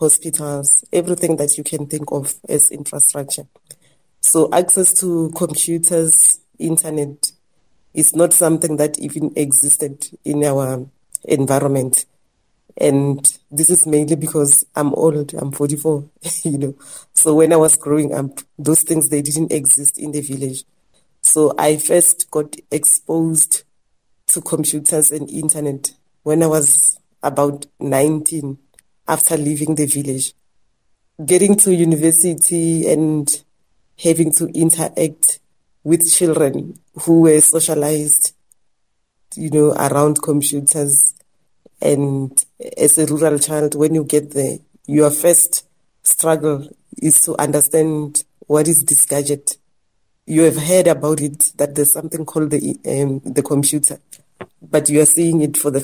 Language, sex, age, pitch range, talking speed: English, female, 30-49, 145-160 Hz, 130 wpm